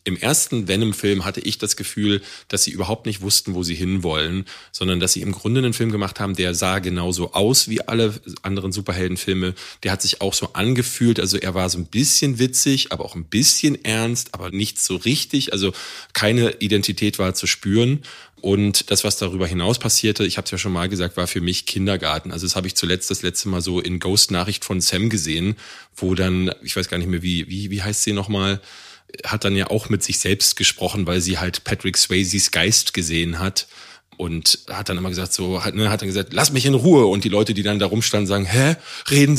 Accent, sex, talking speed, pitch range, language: German, male, 220 wpm, 90-110 Hz, German